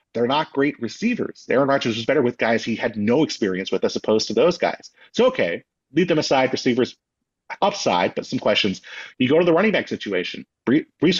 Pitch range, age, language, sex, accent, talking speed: 110-140 Hz, 30-49, English, male, American, 205 wpm